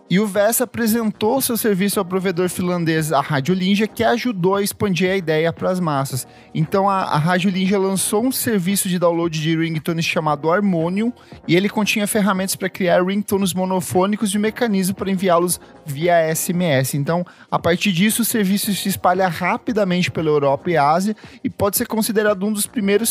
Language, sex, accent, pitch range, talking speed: Portuguese, male, Brazilian, 165-210 Hz, 180 wpm